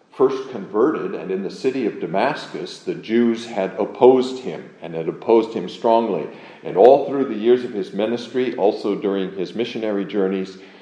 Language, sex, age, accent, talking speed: English, male, 50-69, American, 170 wpm